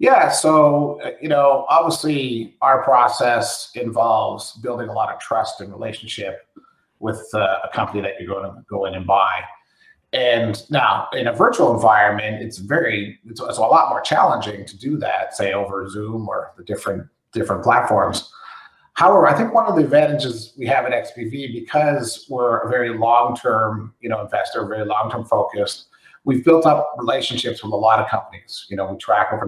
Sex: male